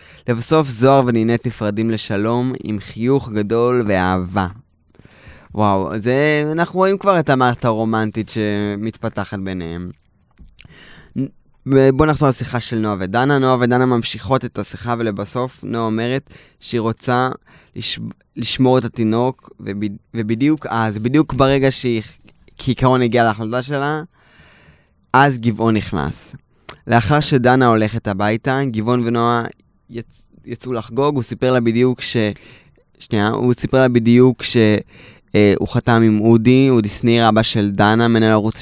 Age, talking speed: 20-39, 130 wpm